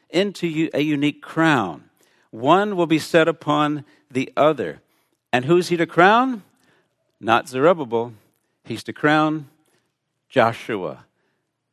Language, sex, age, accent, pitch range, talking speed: English, male, 60-79, American, 130-170 Hz, 120 wpm